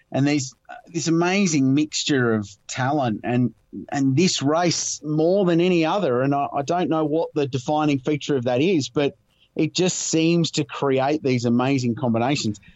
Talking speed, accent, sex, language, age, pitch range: 170 wpm, Australian, male, English, 30-49, 125-160 Hz